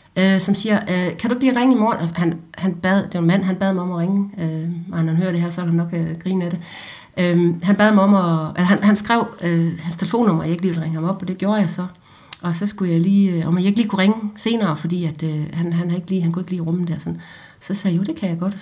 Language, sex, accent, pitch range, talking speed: Danish, female, native, 165-200 Hz, 330 wpm